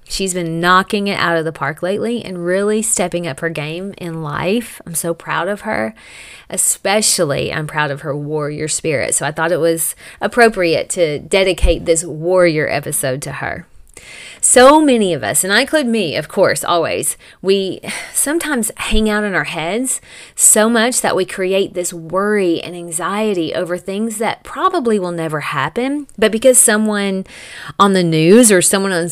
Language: English